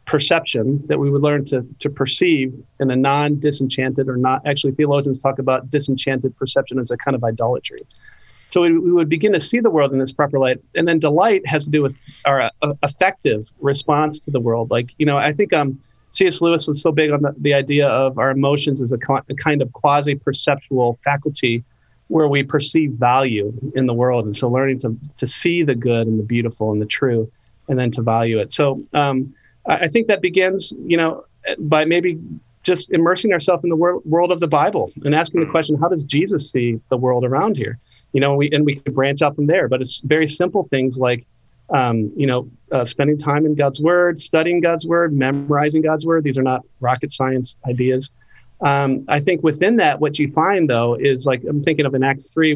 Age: 40-59